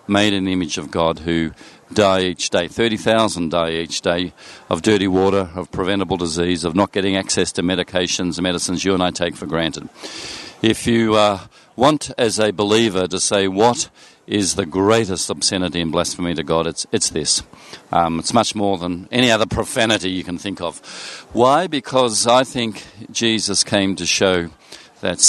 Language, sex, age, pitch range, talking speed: English, male, 50-69, 95-115 Hz, 180 wpm